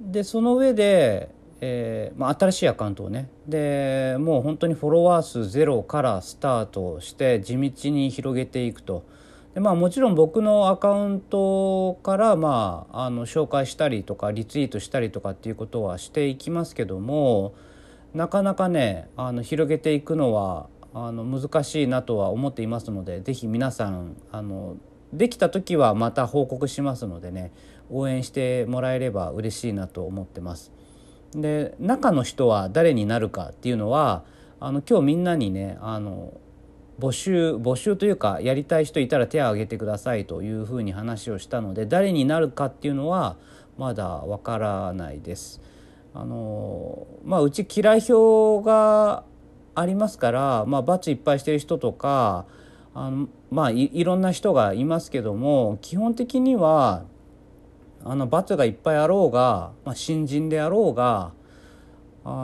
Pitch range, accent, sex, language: 105-165 Hz, native, male, Japanese